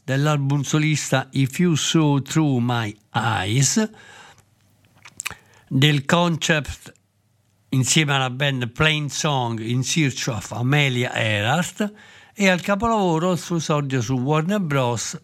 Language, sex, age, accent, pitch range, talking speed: Italian, male, 60-79, native, 130-170 Hz, 115 wpm